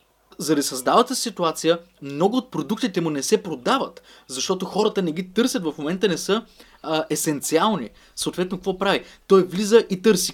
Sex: male